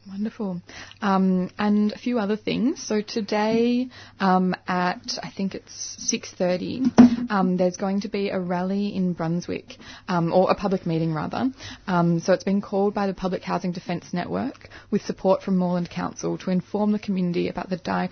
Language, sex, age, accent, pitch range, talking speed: English, female, 20-39, Australian, 170-200 Hz, 170 wpm